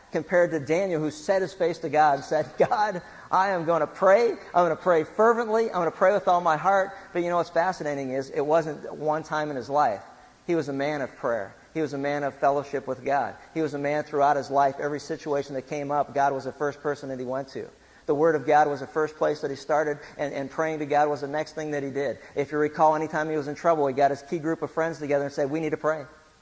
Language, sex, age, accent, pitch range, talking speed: English, male, 50-69, American, 145-165 Hz, 280 wpm